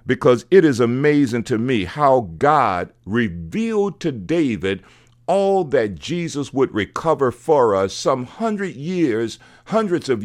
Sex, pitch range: male, 105-145 Hz